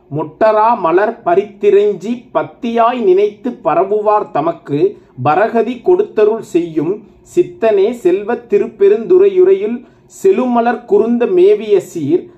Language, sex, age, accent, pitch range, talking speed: Tamil, male, 50-69, native, 230-380 Hz, 75 wpm